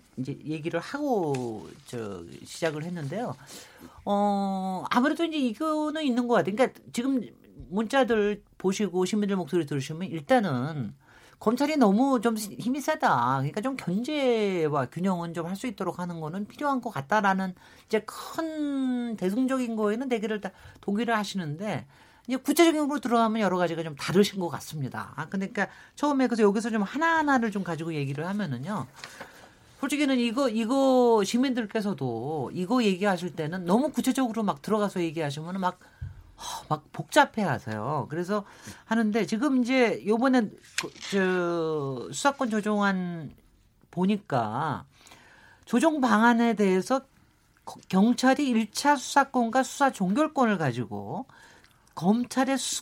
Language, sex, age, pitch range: Korean, male, 40-59, 180-255 Hz